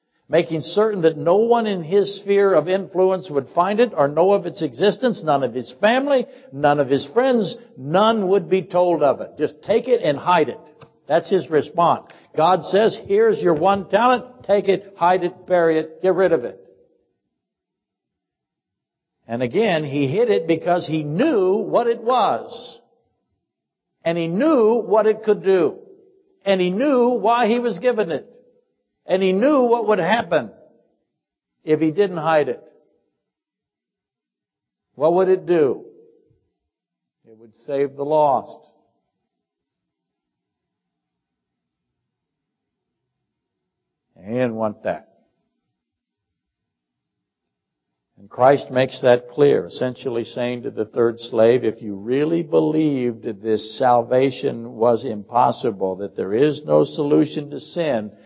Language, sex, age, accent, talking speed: English, male, 60-79, American, 140 wpm